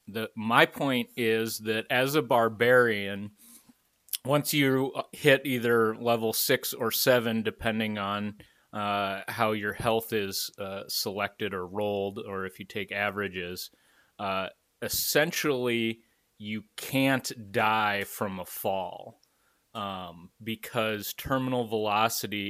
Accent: American